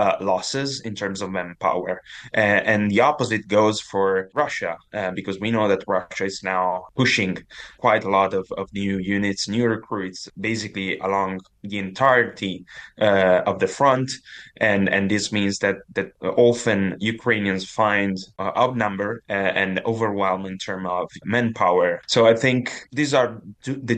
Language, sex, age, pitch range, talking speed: English, male, 20-39, 95-110 Hz, 160 wpm